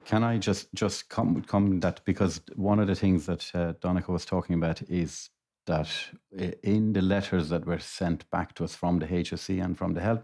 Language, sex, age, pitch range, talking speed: English, male, 60-79, 85-95 Hz, 210 wpm